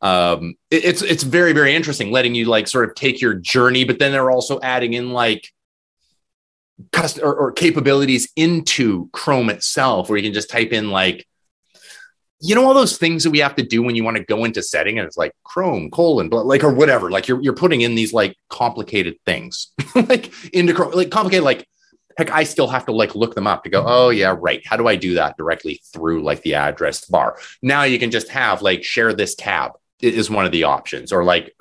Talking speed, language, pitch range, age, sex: 220 wpm, English, 110-165 Hz, 30-49, male